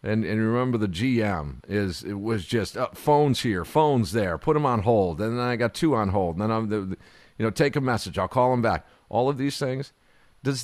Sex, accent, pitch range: male, American, 100-130 Hz